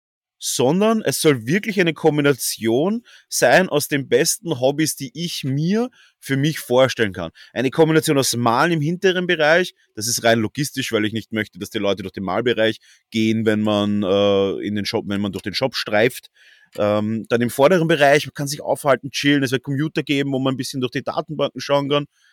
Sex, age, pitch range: male, 30-49, 110-150 Hz